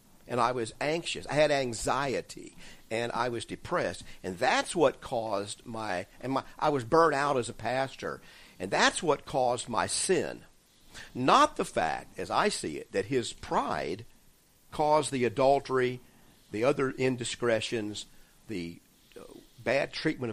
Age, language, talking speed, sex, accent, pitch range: 50-69, English, 150 wpm, male, American, 110-140 Hz